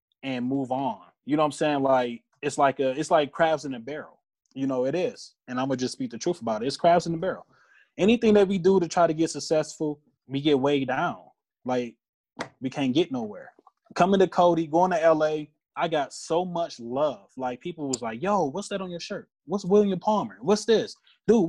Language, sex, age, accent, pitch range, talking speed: English, male, 20-39, American, 135-195 Hz, 225 wpm